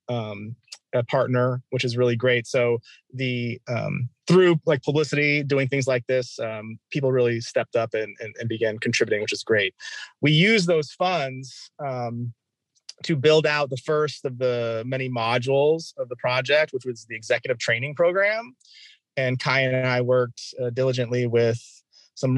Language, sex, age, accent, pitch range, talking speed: English, male, 30-49, American, 120-145 Hz, 165 wpm